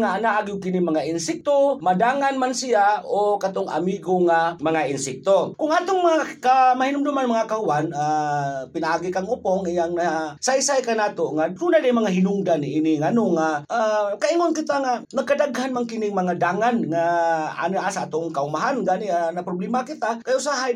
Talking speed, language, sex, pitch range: 170 wpm, Filipino, male, 160-255 Hz